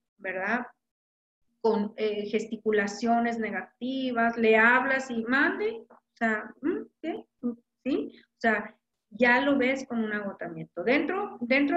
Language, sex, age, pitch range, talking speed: Spanish, female, 40-59, 210-245 Hz, 120 wpm